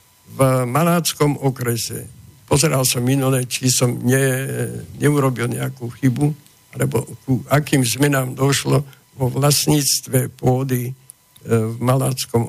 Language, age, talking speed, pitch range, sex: Slovak, 60-79, 100 wpm, 125-145 Hz, male